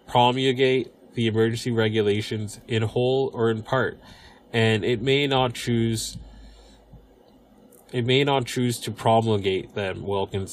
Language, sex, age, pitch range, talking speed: English, male, 20-39, 100-120 Hz, 125 wpm